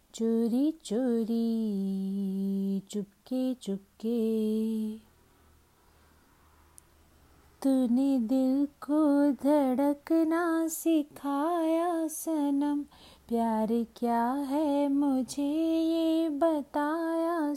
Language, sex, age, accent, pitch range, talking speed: Hindi, female, 30-49, native, 235-325 Hz, 55 wpm